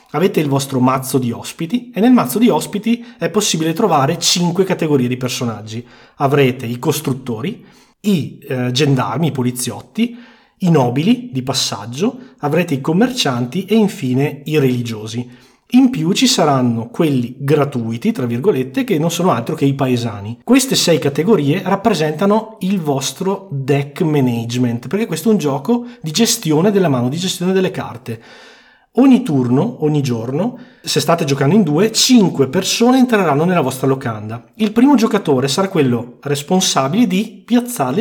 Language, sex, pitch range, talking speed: Italian, male, 130-200 Hz, 150 wpm